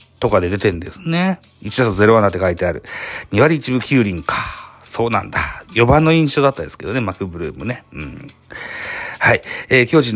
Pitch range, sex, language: 95-130 Hz, male, Japanese